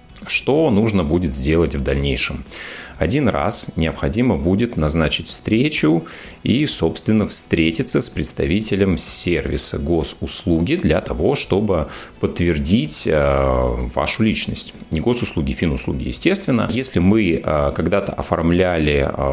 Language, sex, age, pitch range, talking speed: Russian, male, 30-49, 75-100 Hz, 105 wpm